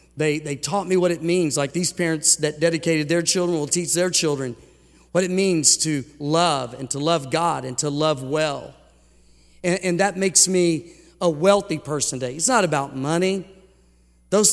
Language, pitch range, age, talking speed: English, 160-195 Hz, 50-69, 185 wpm